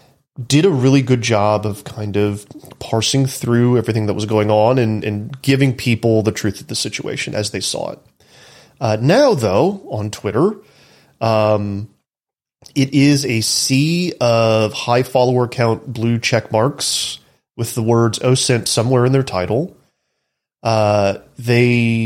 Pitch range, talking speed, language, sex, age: 110-135 Hz, 150 wpm, English, male, 30-49